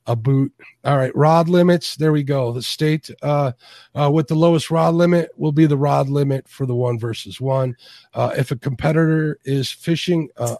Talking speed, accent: 200 wpm, American